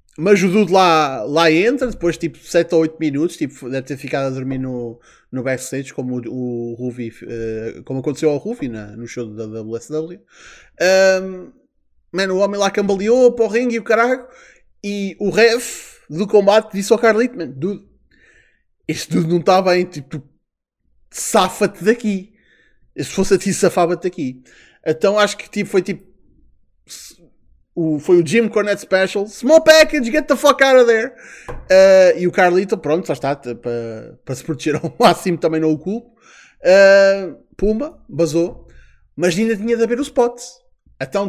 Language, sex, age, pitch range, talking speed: Portuguese, male, 20-39, 150-215 Hz, 170 wpm